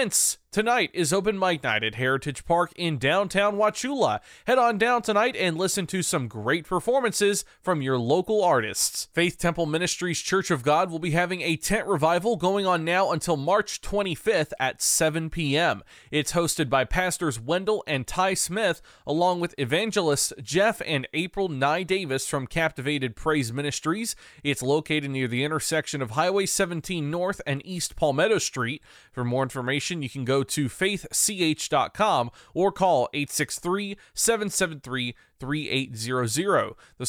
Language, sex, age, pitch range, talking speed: English, male, 20-39, 145-190 Hz, 150 wpm